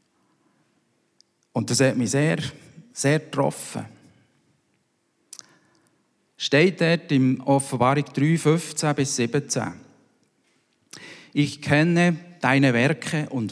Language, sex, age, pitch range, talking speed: German, male, 50-69, 115-145 Hz, 90 wpm